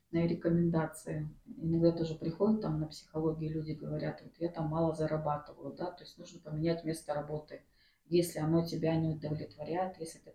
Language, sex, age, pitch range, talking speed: Russian, female, 30-49, 150-170 Hz, 160 wpm